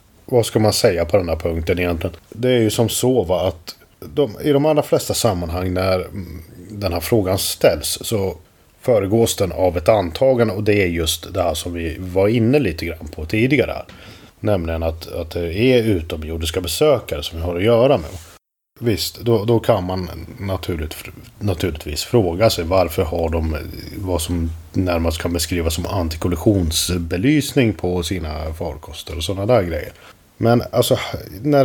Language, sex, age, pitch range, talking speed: Swedish, male, 30-49, 85-110 Hz, 160 wpm